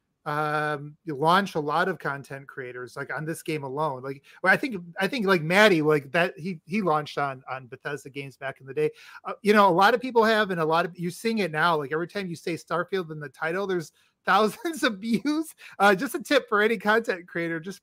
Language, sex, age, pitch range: English, male, 30-49, 150-190 Hz